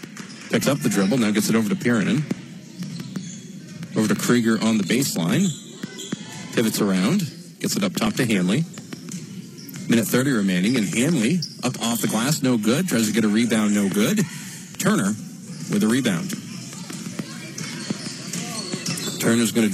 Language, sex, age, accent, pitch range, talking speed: English, male, 40-59, American, 140-200 Hz, 150 wpm